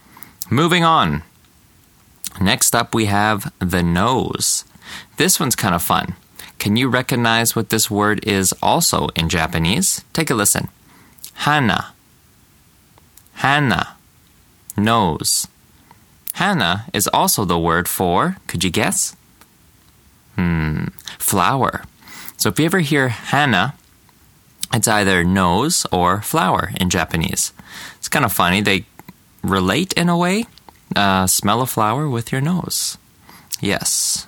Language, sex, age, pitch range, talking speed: English, male, 20-39, 90-130 Hz, 125 wpm